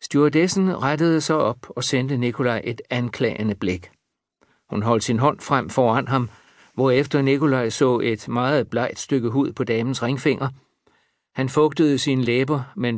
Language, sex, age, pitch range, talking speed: Danish, male, 60-79, 125-150 Hz, 155 wpm